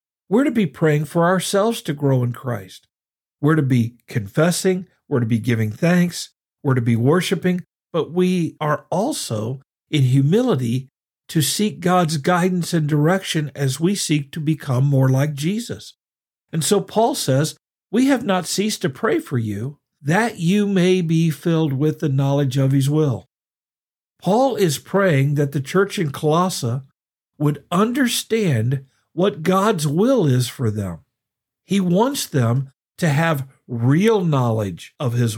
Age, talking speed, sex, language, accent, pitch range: 50-69, 155 wpm, male, English, American, 130-180 Hz